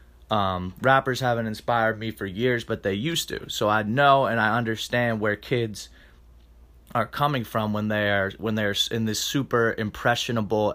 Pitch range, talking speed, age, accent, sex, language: 100-120 Hz, 165 wpm, 20-39, American, male, English